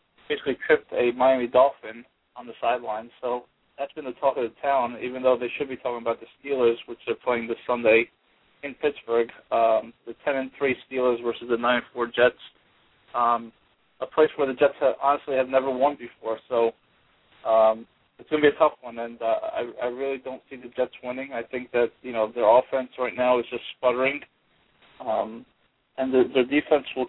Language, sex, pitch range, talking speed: English, male, 115-135 Hz, 200 wpm